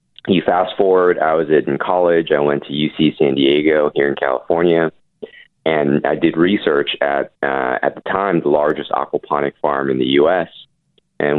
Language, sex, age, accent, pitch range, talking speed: English, male, 30-49, American, 75-100 Hz, 175 wpm